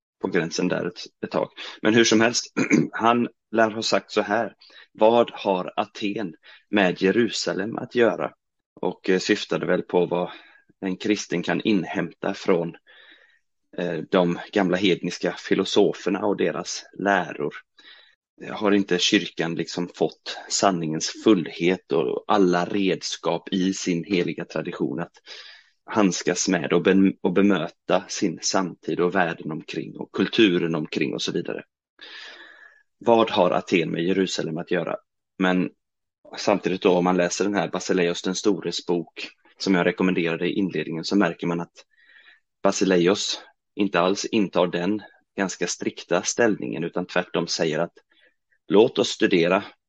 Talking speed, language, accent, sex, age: 135 wpm, Swedish, native, male, 30-49